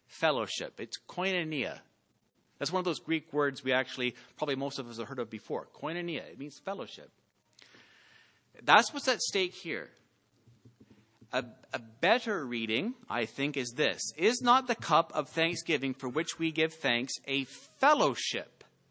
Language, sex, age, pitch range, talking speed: English, male, 30-49, 140-200 Hz, 155 wpm